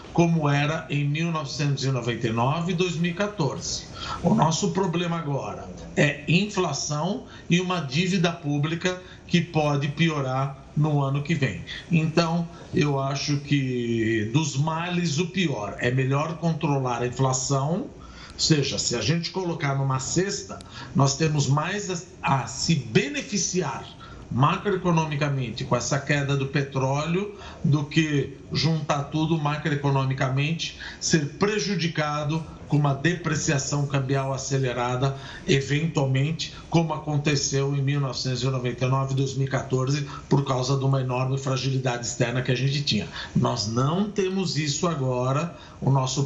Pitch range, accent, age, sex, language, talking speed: 135-165 Hz, Brazilian, 50-69, male, Portuguese, 120 wpm